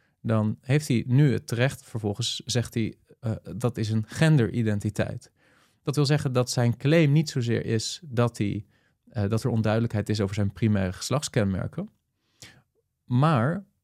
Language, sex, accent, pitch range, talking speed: Dutch, male, Dutch, 105-130 Hz, 145 wpm